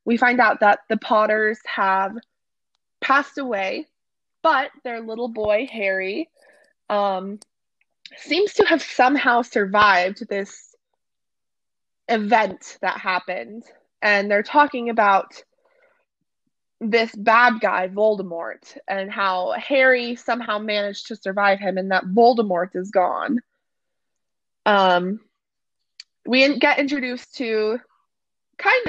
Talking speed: 105 wpm